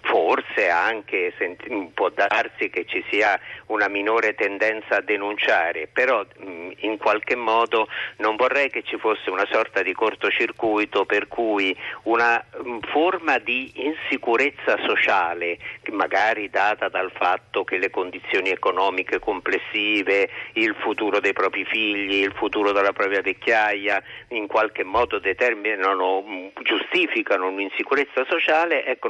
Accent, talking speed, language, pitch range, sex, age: native, 120 wpm, Italian, 100-140 Hz, male, 50-69